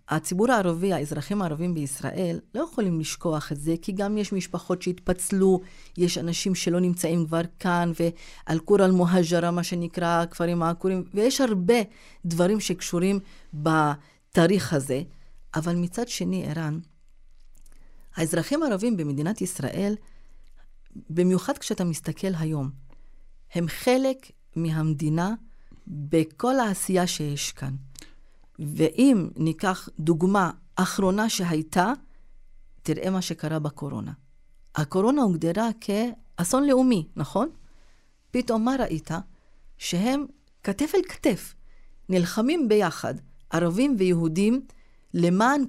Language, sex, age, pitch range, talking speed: Hebrew, female, 40-59, 160-220 Hz, 100 wpm